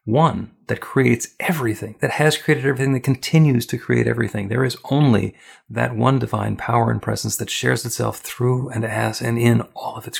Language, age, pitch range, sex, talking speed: English, 40-59, 105-125 Hz, male, 195 wpm